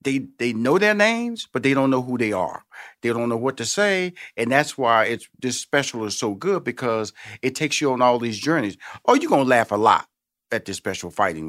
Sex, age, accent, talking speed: male, 40-59, American, 240 wpm